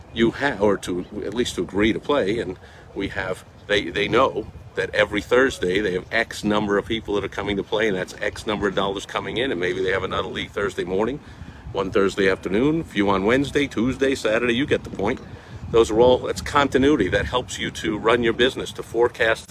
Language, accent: English, American